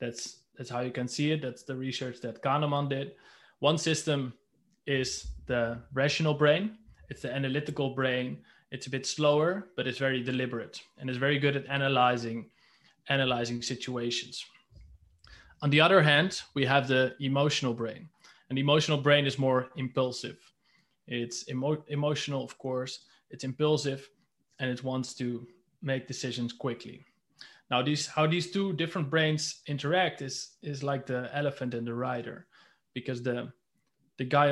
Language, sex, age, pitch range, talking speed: English, male, 20-39, 125-150 Hz, 155 wpm